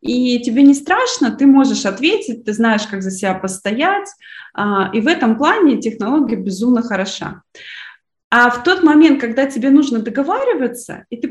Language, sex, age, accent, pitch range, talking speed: Russian, female, 20-39, native, 195-270 Hz, 160 wpm